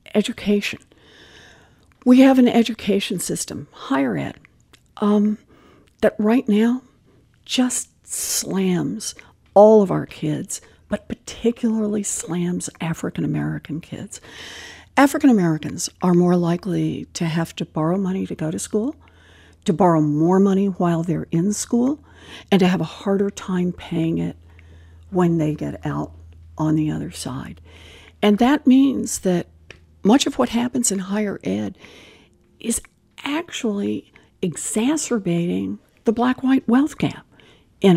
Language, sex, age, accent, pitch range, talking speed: English, female, 60-79, American, 170-235 Hz, 125 wpm